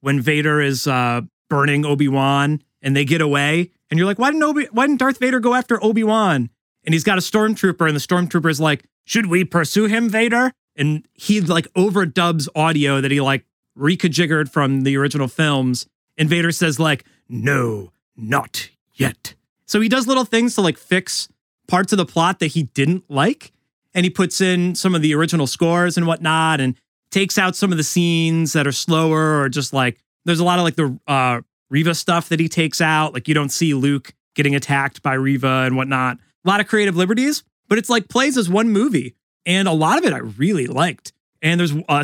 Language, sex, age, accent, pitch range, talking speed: English, male, 30-49, American, 140-190 Hz, 210 wpm